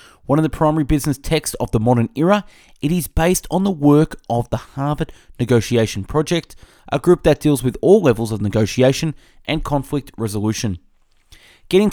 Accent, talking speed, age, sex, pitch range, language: Australian, 170 wpm, 30-49, male, 115-155 Hz, English